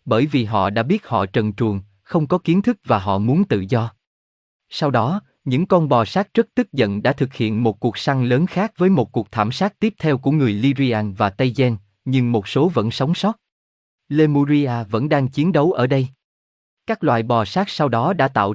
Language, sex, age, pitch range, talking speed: Vietnamese, male, 20-39, 110-150 Hz, 220 wpm